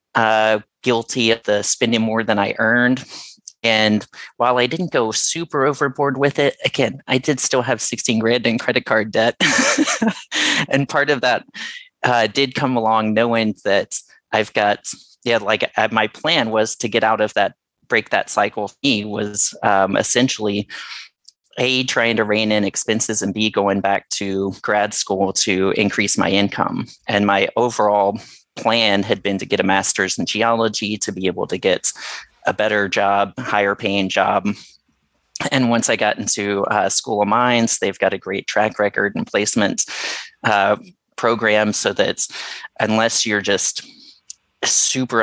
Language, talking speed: English, 165 wpm